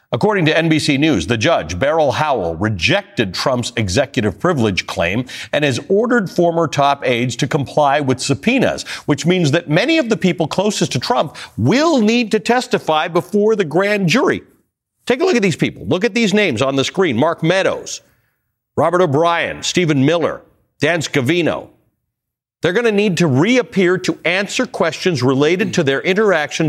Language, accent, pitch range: English, American, 115-175 Hz